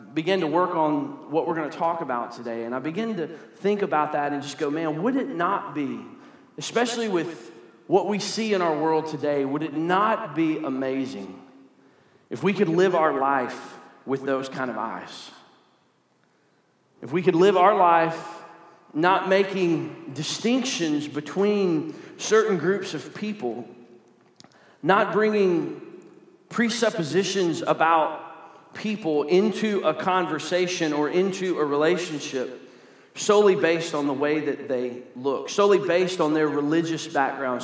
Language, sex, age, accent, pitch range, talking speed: English, male, 40-59, American, 145-190 Hz, 145 wpm